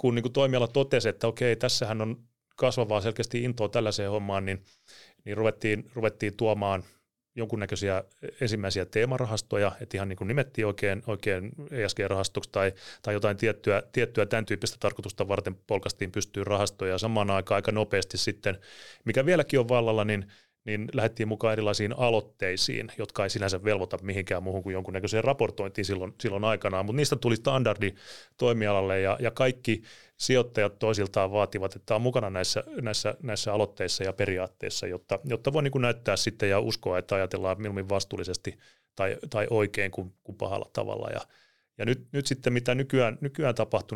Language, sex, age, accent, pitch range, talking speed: Finnish, male, 30-49, native, 100-120 Hz, 160 wpm